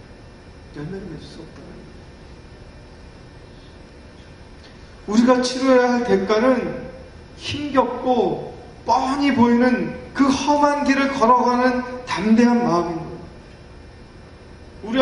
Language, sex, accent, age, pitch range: Korean, male, native, 40-59, 175-265 Hz